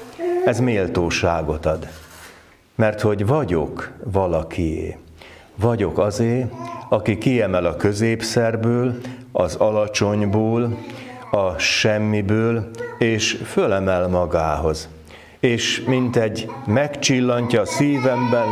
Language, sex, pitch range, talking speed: Hungarian, male, 90-120 Hz, 85 wpm